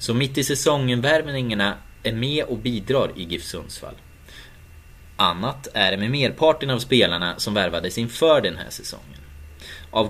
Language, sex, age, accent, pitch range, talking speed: Swedish, male, 30-49, native, 95-130 Hz, 155 wpm